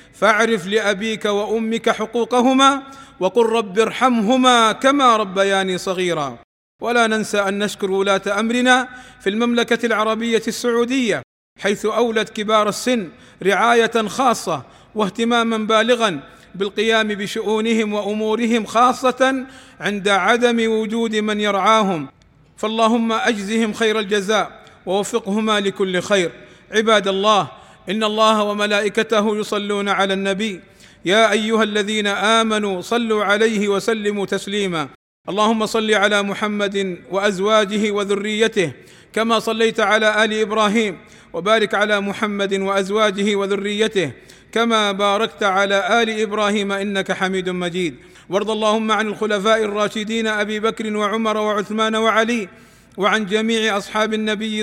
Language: Arabic